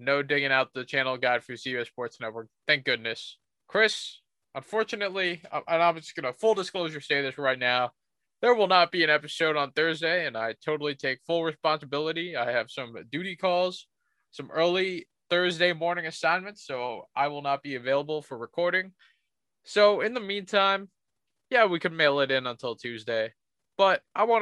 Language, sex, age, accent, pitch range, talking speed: English, male, 20-39, American, 135-175 Hz, 175 wpm